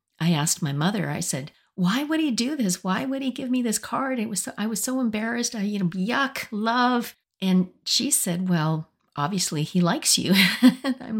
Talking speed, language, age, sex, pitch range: 205 wpm, English, 50-69, female, 150-195 Hz